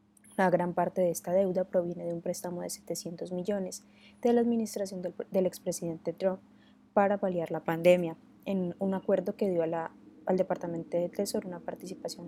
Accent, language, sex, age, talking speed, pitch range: Colombian, Spanish, female, 20-39, 180 wpm, 165-195 Hz